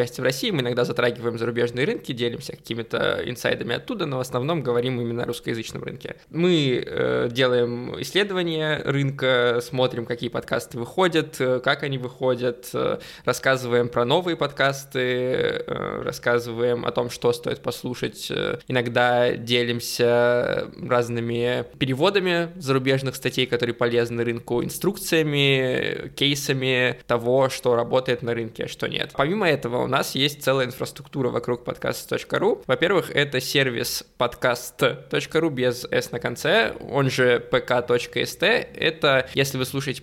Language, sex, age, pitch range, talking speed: Russian, male, 20-39, 120-140 Hz, 125 wpm